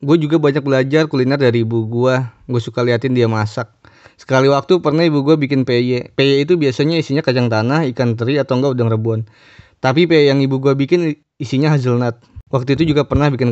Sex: male